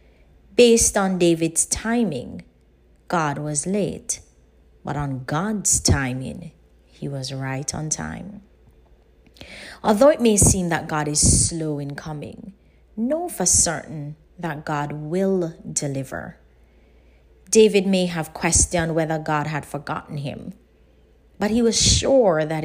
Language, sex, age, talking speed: English, female, 30-49, 125 wpm